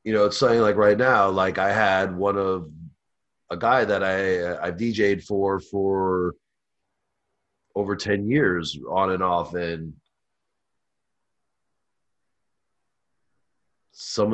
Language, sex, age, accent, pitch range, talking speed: English, male, 30-49, American, 95-105 Hz, 115 wpm